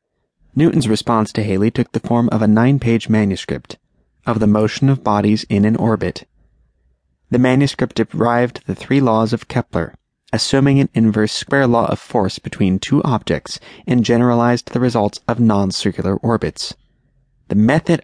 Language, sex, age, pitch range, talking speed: English, male, 30-49, 105-130 Hz, 155 wpm